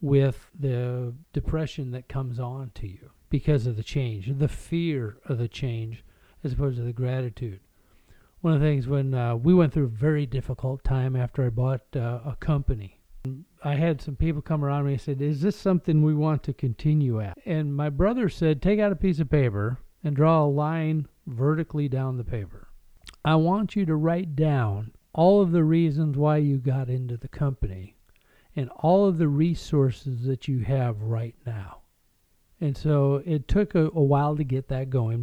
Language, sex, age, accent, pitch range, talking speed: English, male, 50-69, American, 120-155 Hz, 190 wpm